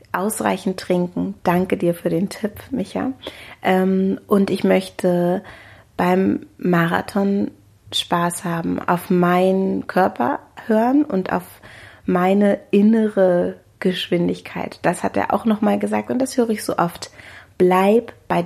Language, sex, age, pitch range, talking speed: German, female, 30-49, 170-205 Hz, 125 wpm